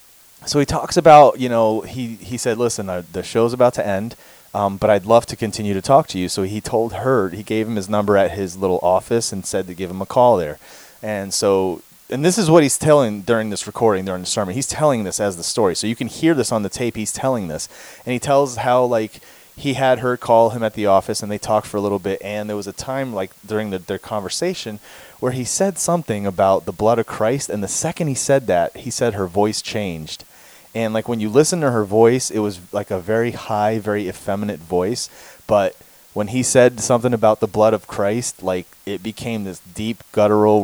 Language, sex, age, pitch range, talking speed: English, male, 30-49, 100-120 Hz, 235 wpm